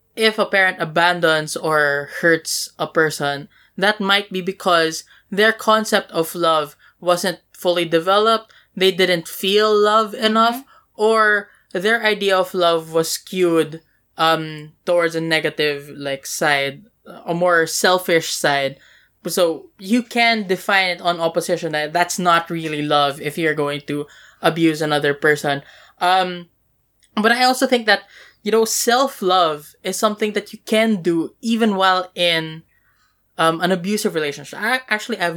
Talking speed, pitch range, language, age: 145 wpm, 160-205 Hz, English, 20-39